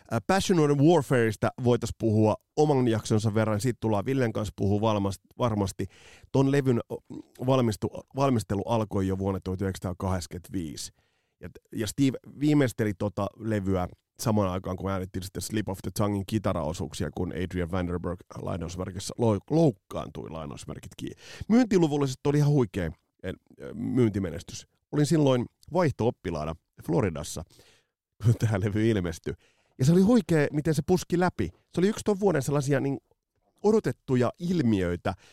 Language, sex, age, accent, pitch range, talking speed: Finnish, male, 30-49, native, 95-140 Hz, 130 wpm